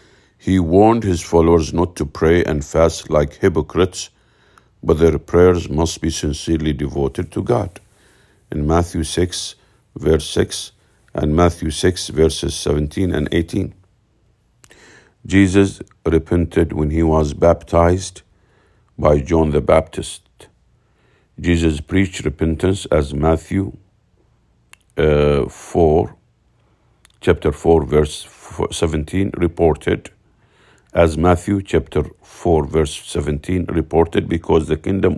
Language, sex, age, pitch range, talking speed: English, male, 50-69, 80-95 Hz, 110 wpm